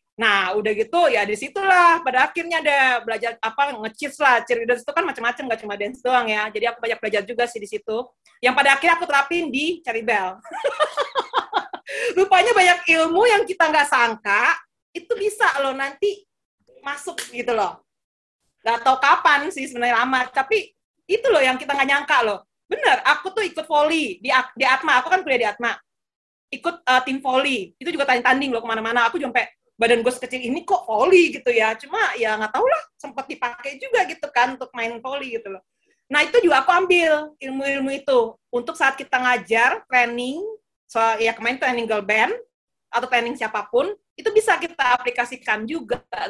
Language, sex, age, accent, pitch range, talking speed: English, female, 30-49, Indonesian, 235-335 Hz, 180 wpm